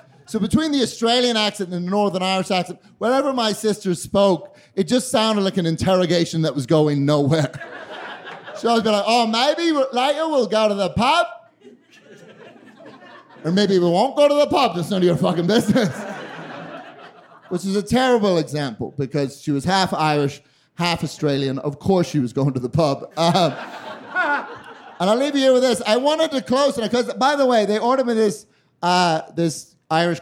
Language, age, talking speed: English, 30-49, 190 wpm